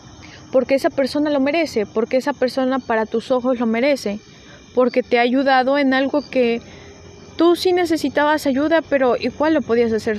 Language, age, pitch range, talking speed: Spanish, 20-39, 220-280 Hz, 170 wpm